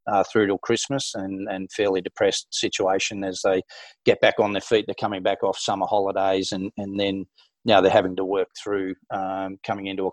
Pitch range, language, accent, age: 95-105 Hz, English, Australian, 30-49